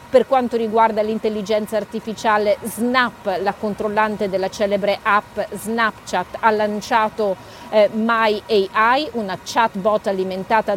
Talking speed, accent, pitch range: 105 wpm, native, 195-230 Hz